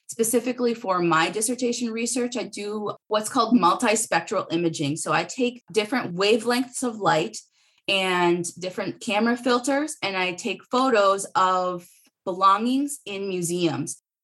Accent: American